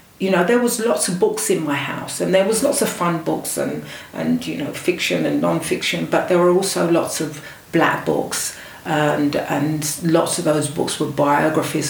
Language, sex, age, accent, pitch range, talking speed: English, female, 40-59, British, 155-210 Hz, 200 wpm